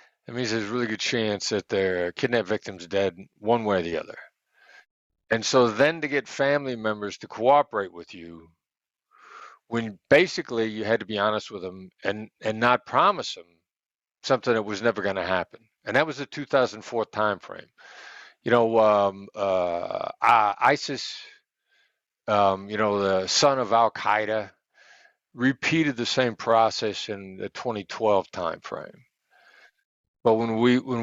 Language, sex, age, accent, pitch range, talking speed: English, male, 50-69, American, 100-125 Hz, 155 wpm